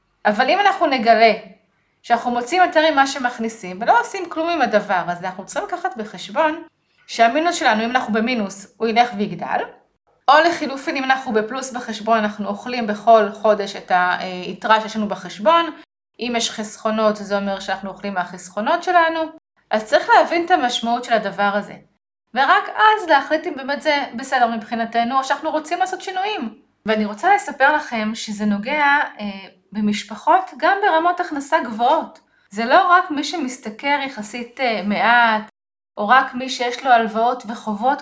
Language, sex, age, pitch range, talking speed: Hebrew, female, 20-39, 220-315 Hz, 155 wpm